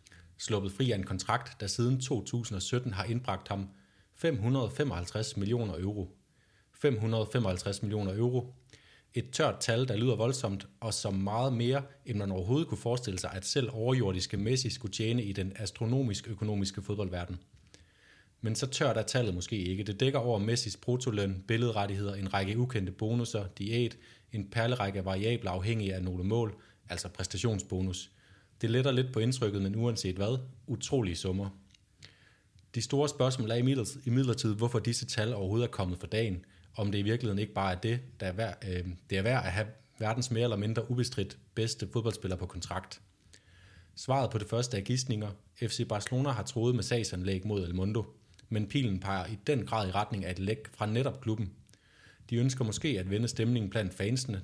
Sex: male